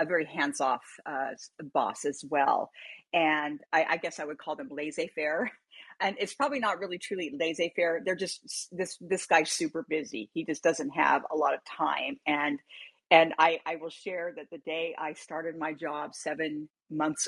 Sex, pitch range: female, 155-185 Hz